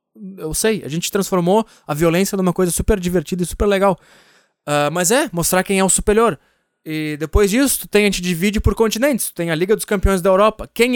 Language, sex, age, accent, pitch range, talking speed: Portuguese, male, 20-39, Brazilian, 170-220 Hz, 220 wpm